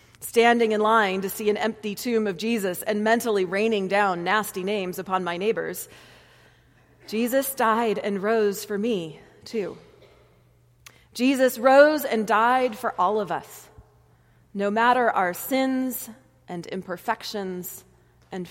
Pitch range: 180-250 Hz